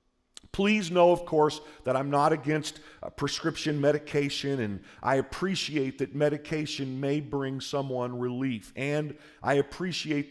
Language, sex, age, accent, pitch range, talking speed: English, male, 50-69, American, 130-175 Hz, 130 wpm